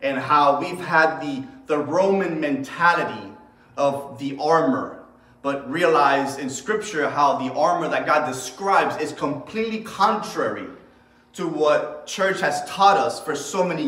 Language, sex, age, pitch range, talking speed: English, male, 30-49, 165-270 Hz, 145 wpm